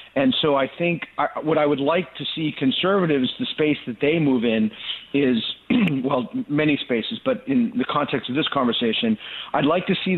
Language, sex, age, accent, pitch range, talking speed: English, male, 50-69, American, 130-170 Hz, 190 wpm